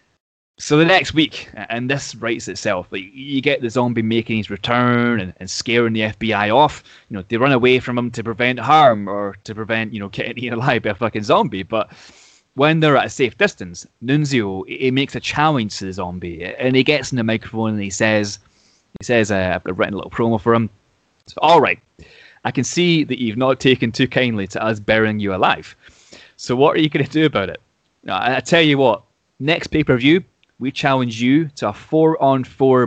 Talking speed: 215 wpm